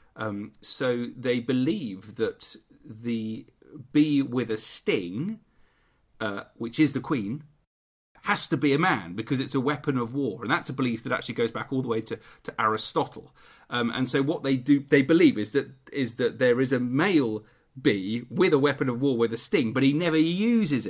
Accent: British